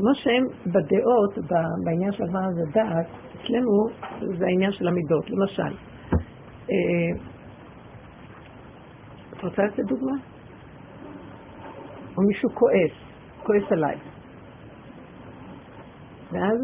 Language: Hebrew